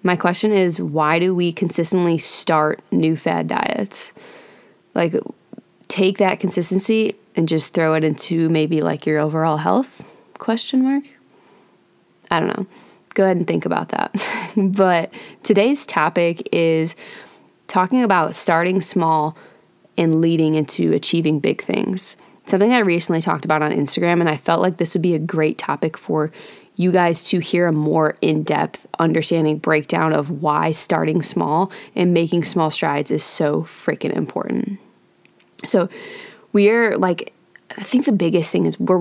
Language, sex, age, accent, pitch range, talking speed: English, female, 20-39, American, 160-195 Hz, 150 wpm